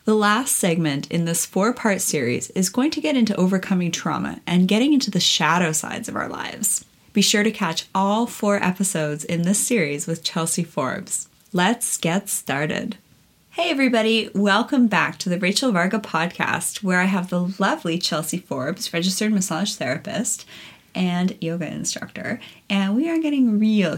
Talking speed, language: 165 wpm, English